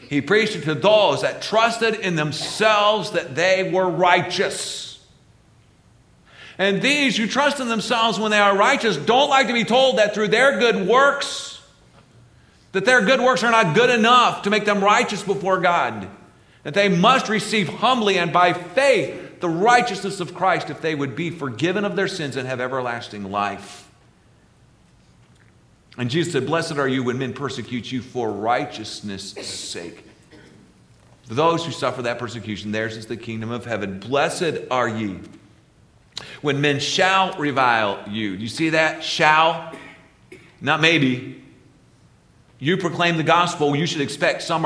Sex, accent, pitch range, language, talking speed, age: male, American, 120-195 Hz, English, 160 wpm, 50-69